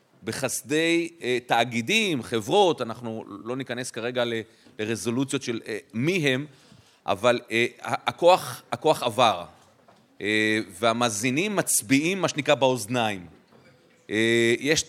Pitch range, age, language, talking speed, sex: 120-145 Hz, 30-49, Hebrew, 85 wpm, male